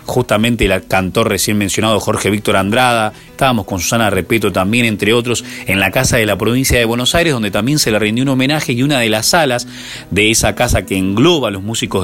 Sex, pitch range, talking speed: male, 100-125 Hz, 220 wpm